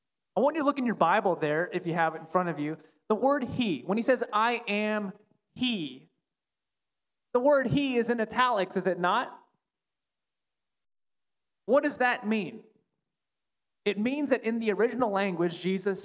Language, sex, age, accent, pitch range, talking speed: English, male, 20-39, American, 165-225 Hz, 175 wpm